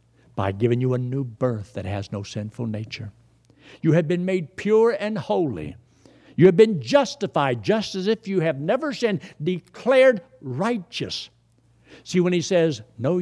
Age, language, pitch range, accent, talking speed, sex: 60-79, English, 115-160 Hz, American, 165 wpm, male